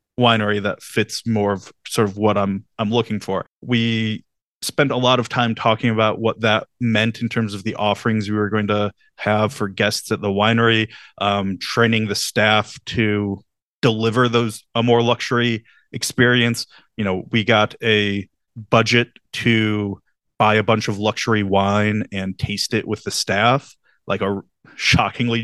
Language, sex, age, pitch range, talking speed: English, male, 30-49, 100-120 Hz, 165 wpm